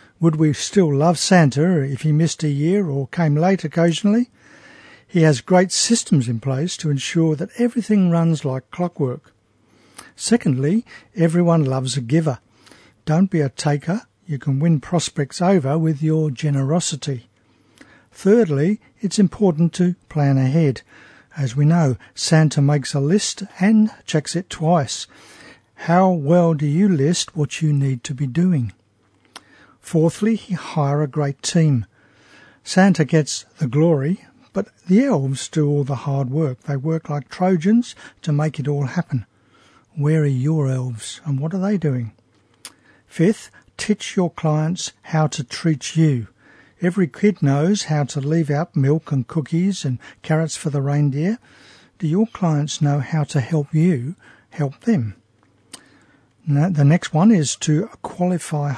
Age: 60-79